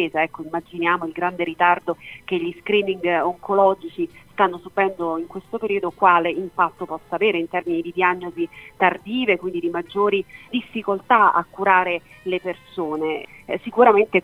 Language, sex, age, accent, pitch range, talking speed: Italian, female, 40-59, native, 170-200 Hz, 140 wpm